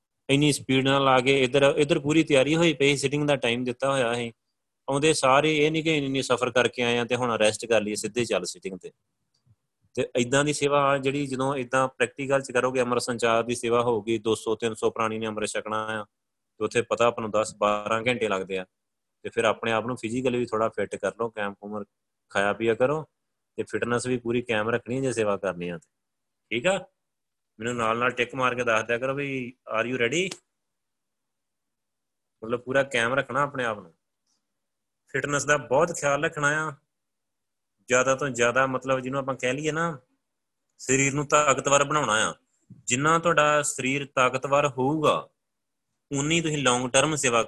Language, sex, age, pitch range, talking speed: Punjabi, male, 30-49, 115-145 Hz, 150 wpm